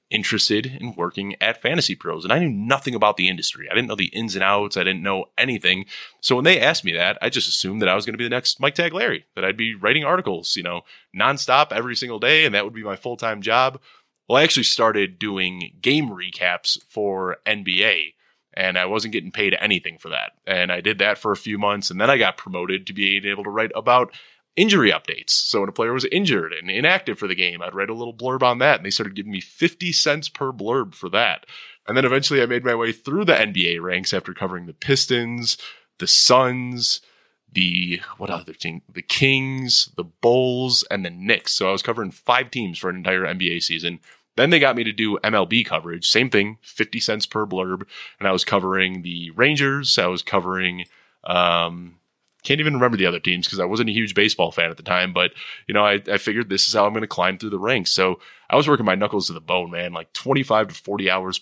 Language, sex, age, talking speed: English, male, 20-39, 235 wpm